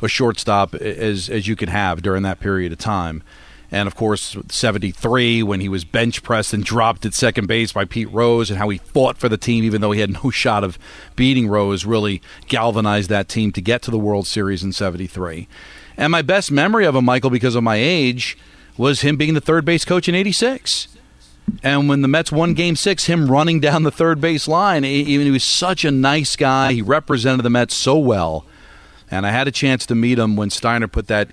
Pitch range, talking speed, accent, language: 100-130 Hz, 215 wpm, American, English